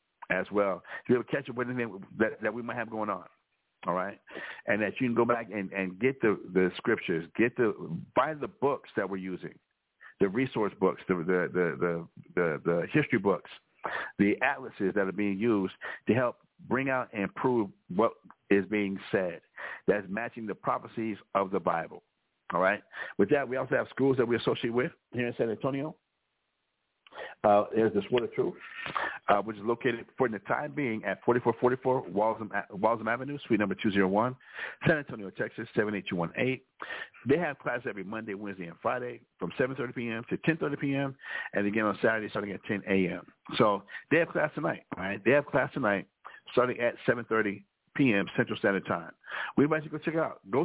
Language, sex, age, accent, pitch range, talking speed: English, male, 60-79, American, 100-130 Hz, 195 wpm